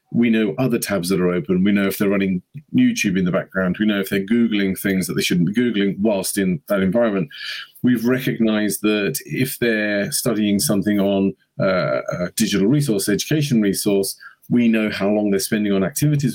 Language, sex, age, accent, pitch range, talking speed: English, male, 40-59, British, 100-125 Hz, 195 wpm